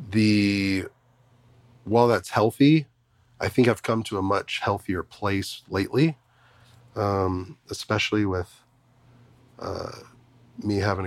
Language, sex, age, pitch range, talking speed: English, male, 30-49, 100-120 Hz, 110 wpm